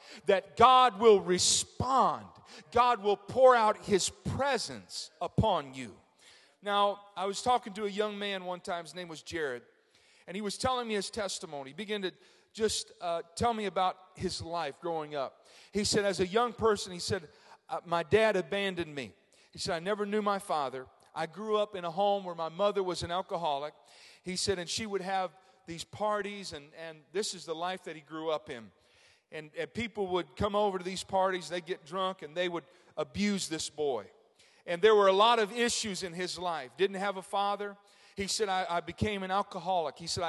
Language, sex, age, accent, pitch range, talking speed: English, male, 40-59, American, 170-205 Hz, 205 wpm